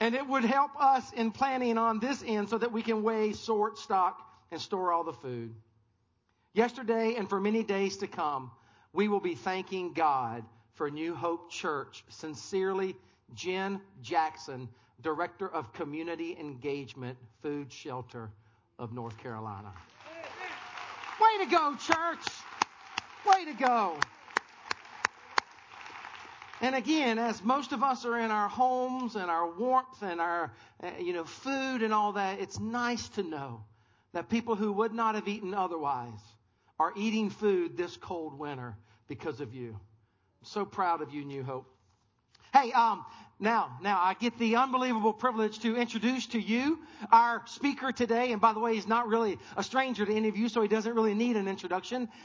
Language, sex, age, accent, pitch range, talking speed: English, male, 50-69, American, 150-240 Hz, 165 wpm